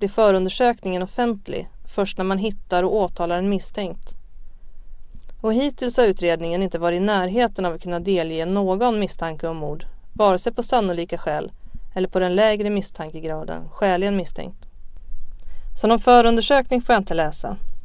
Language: Swedish